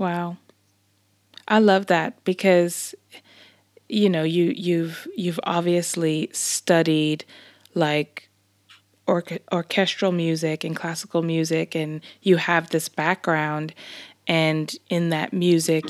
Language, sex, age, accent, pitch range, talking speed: English, female, 20-39, American, 160-180 Hz, 105 wpm